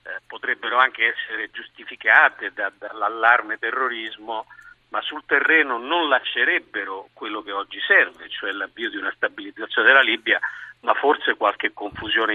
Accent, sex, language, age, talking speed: native, male, Italian, 50-69, 125 wpm